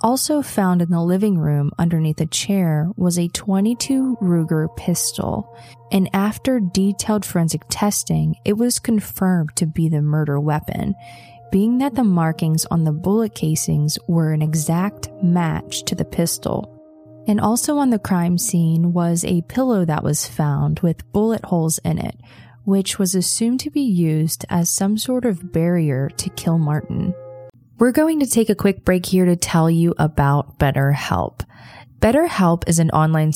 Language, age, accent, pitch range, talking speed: English, 20-39, American, 150-195 Hz, 160 wpm